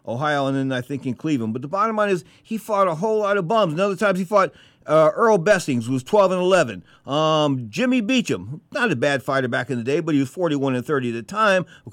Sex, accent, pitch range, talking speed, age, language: male, American, 130-200 Hz, 265 wpm, 50-69, English